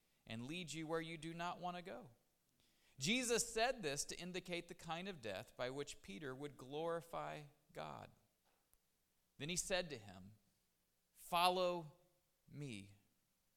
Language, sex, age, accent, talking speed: English, male, 40-59, American, 140 wpm